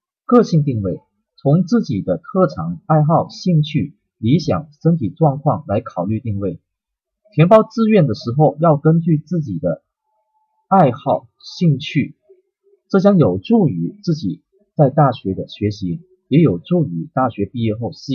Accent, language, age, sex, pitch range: native, Chinese, 30-49, male, 115-180 Hz